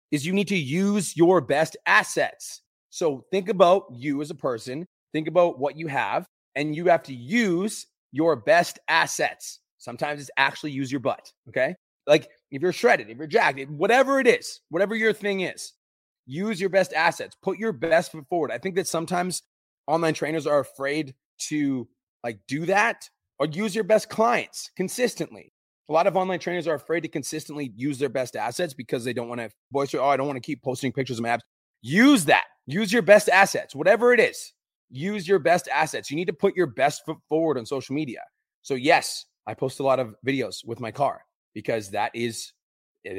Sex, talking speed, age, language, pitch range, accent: male, 200 wpm, 30-49, English, 135-190 Hz, American